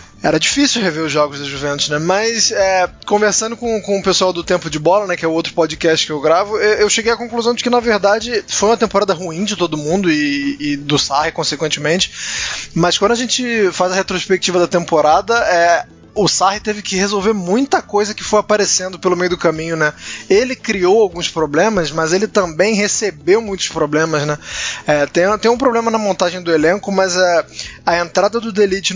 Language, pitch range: Portuguese, 165-205 Hz